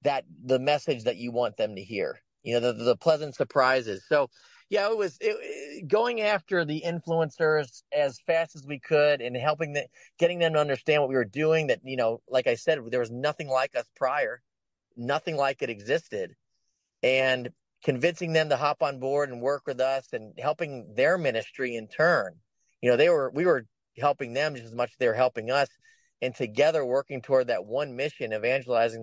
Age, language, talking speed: 30-49, English, 200 wpm